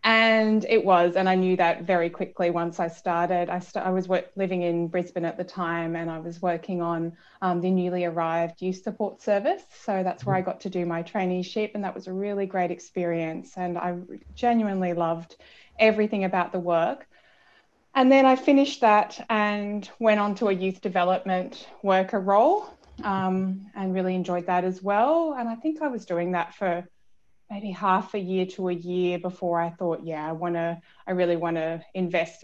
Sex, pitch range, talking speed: female, 175-210 Hz, 190 wpm